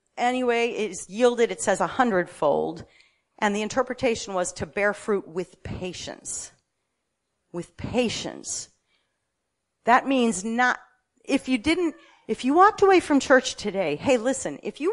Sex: female